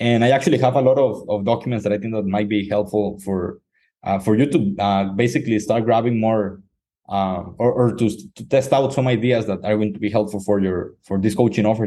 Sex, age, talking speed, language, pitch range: male, 20-39, 240 wpm, English, 105-135 Hz